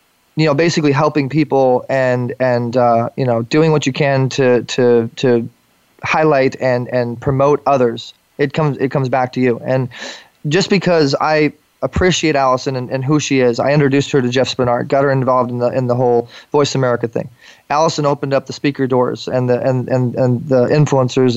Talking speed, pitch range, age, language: 195 wpm, 130-150 Hz, 20-39, English